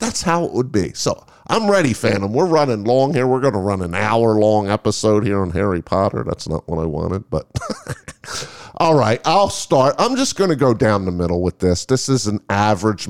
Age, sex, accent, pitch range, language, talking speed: 50-69, male, American, 95-135 Hz, English, 215 wpm